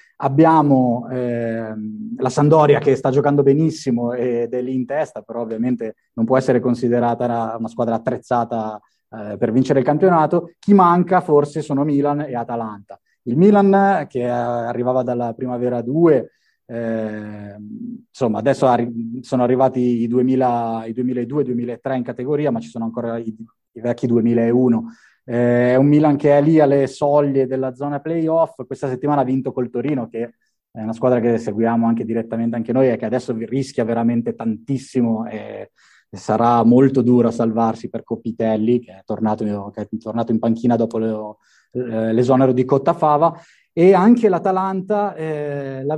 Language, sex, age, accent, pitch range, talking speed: Italian, male, 20-39, native, 115-140 Hz, 155 wpm